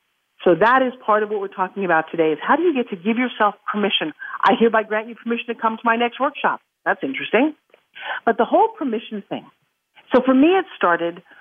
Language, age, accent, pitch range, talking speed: English, 50-69, American, 205-255 Hz, 220 wpm